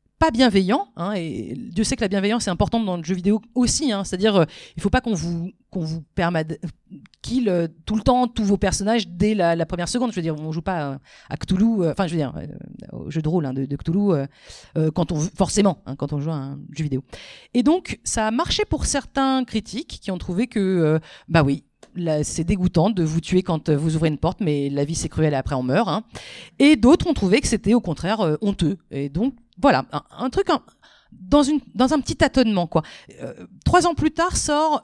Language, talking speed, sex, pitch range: French, 245 wpm, female, 170-245 Hz